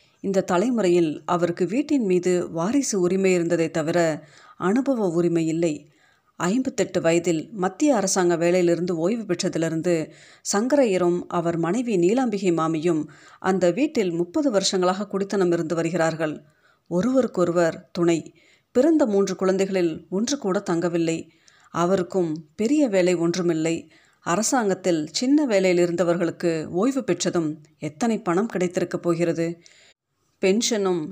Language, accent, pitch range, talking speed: Tamil, native, 170-195 Hz, 105 wpm